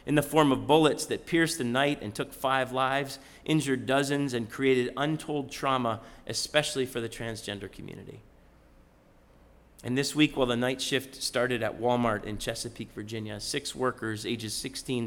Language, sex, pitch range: English, male, 105-155 Hz